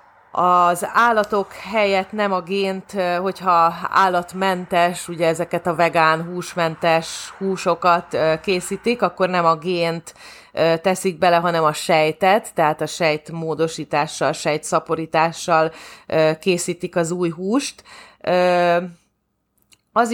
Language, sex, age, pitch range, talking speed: Hungarian, female, 30-49, 165-190 Hz, 100 wpm